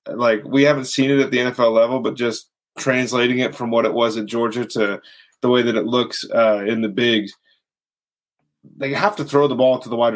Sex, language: male, English